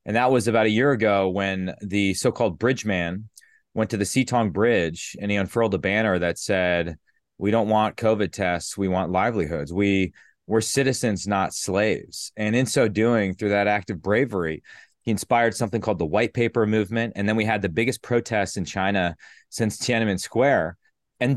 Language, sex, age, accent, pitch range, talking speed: English, male, 30-49, American, 100-120 Hz, 190 wpm